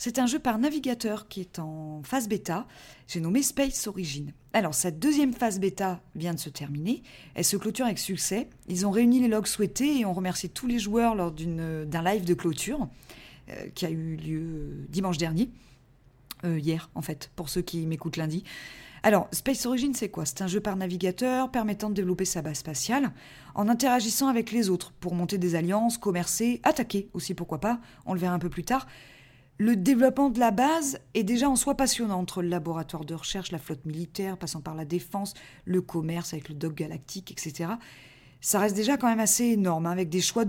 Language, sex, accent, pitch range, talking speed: French, female, French, 165-230 Hz, 205 wpm